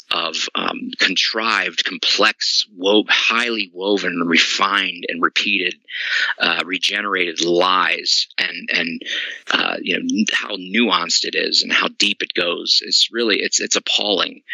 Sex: male